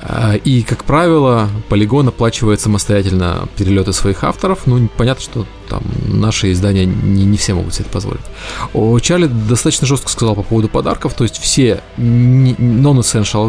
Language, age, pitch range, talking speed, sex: Russian, 20-39, 100-120 Hz, 145 wpm, male